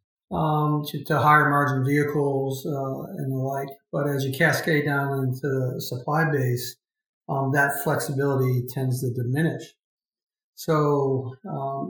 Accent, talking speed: American, 135 wpm